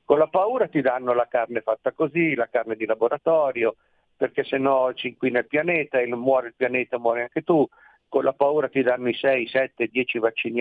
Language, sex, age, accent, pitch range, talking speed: Italian, male, 50-69, native, 125-195 Hz, 210 wpm